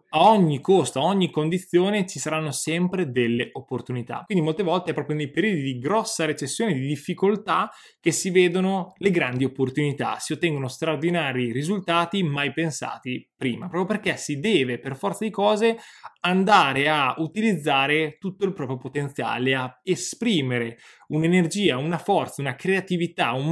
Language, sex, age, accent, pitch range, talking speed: Italian, male, 20-39, native, 135-185 Hz, 150 wpm